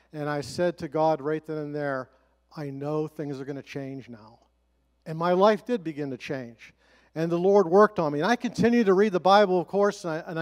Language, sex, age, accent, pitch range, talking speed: English, male, 50-69, American, 150-175 Hz, 230 wpm